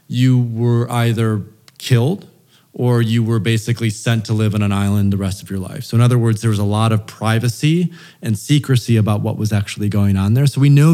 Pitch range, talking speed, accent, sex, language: 105-130 Hz, 225 wpm, American, male, English